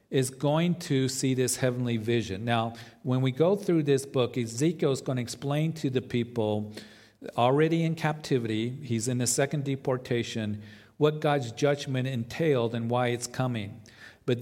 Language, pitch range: English, 115-145 Hz